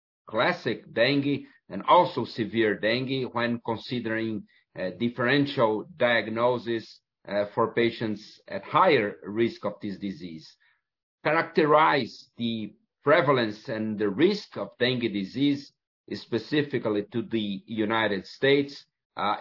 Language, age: English, 50-69